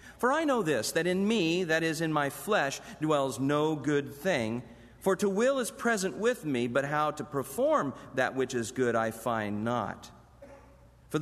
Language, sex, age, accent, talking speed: English, male, 50-69, American, 185 wpm